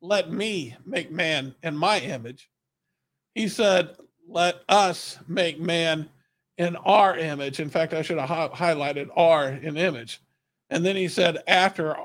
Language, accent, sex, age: English, American, male, 50-69